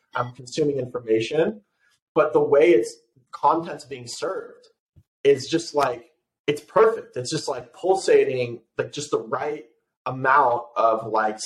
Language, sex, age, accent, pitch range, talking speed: English, male, 30-49, American, 115-165 Hz, 135 wpm